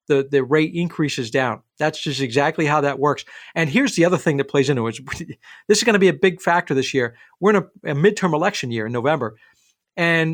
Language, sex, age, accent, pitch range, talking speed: English, male, 40-59, American, 140-175 Hz, 230 wpm